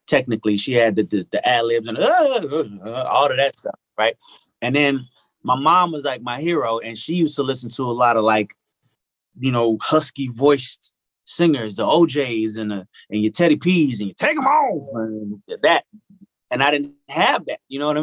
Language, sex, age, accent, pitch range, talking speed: English, male, 30-49, American, 110-140 Hz, 210 wpm